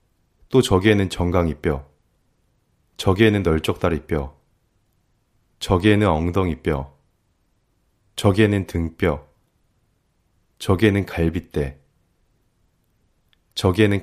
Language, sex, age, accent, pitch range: Korean, male, 30-49, native, 85-105 Hz